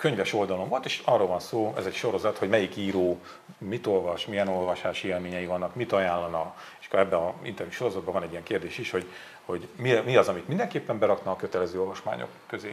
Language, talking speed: Hungarian, 205 wpm